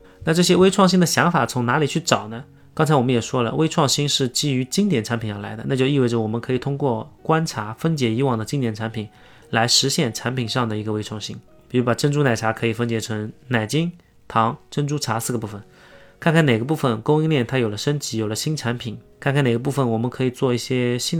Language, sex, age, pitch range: Chinese, male, 20-39, 115-145 Hz